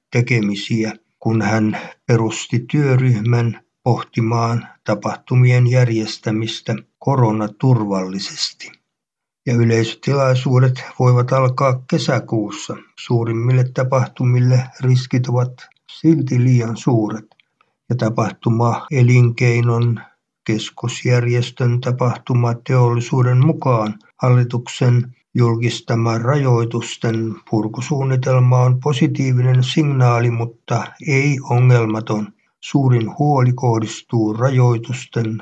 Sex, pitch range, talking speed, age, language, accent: male, 115-130 Hz, 65 wpm, 60-79, Finnish, native